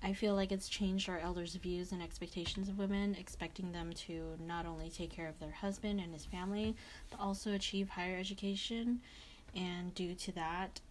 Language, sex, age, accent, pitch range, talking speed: English, female, 20-39, American, 165-190 Hz, 185 wpm